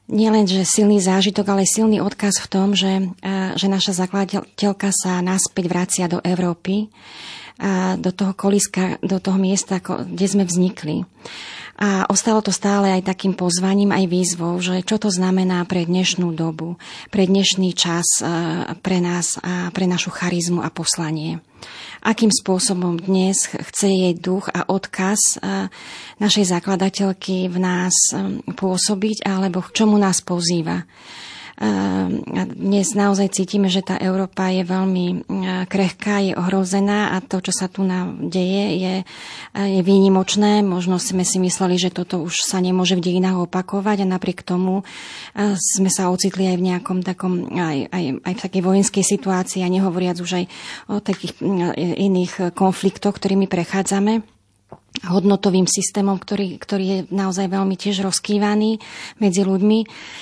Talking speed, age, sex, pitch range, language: 145 wpm, 30-49, female, 180-200 Hz, Slovak